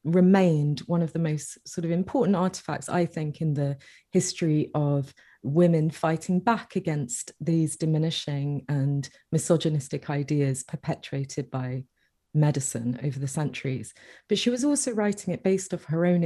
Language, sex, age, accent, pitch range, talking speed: English, female, 30-49, British, 145-180 Hz, 150 wpm